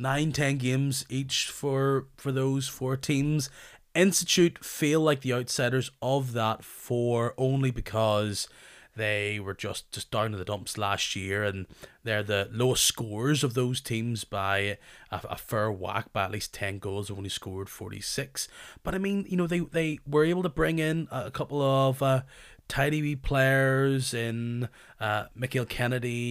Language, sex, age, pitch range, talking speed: English, male, 30-49, 115-140 Hz, 170 wpm